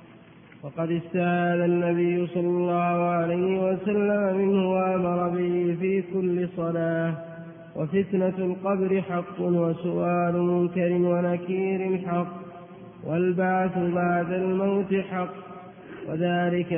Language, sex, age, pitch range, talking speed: Arabic, male, 20-39, 175-190 Hz, 90 wpm